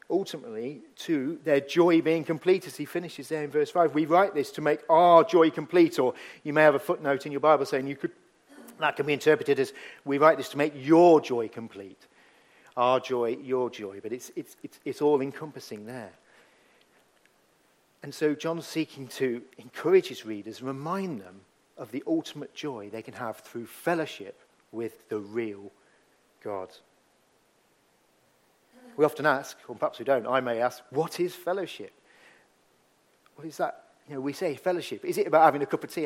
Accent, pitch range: British, 135-175 Hz